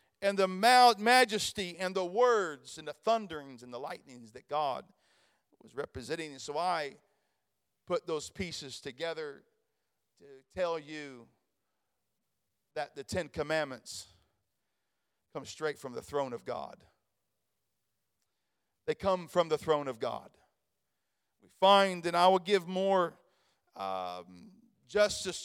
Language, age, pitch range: English, 40-59, 160-200 Hz